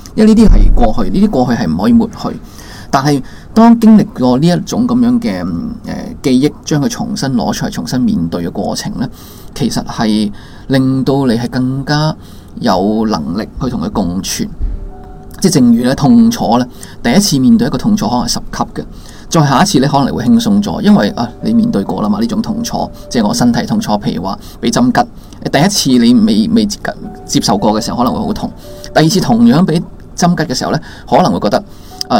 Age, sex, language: 20-39, male, Chinese